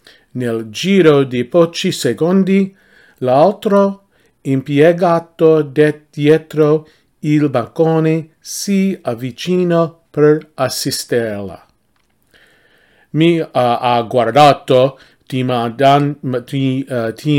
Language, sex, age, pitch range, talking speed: English, male, 40-59, 125-180 Hz, 65 wpm